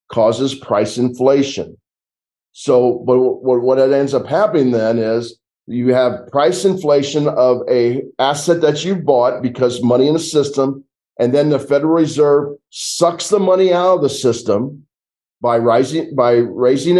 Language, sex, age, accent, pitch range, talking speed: English, male, 40-59, American, 125-155 Hz, 150 wpm